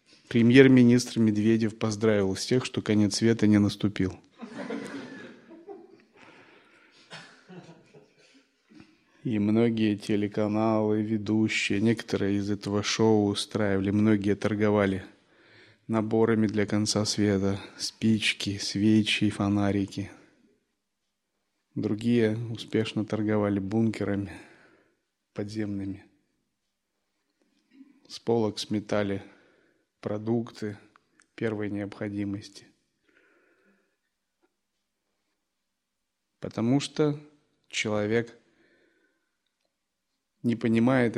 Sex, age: male, 20-39